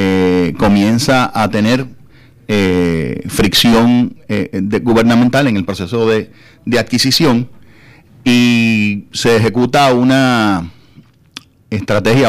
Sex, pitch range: male, 100-125 Hz